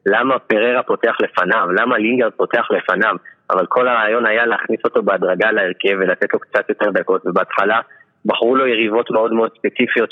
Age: 20-39